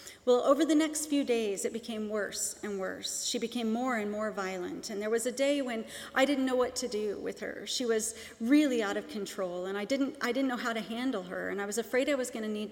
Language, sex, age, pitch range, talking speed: English, female, 40-59, 220-275 Hz, 265 wpm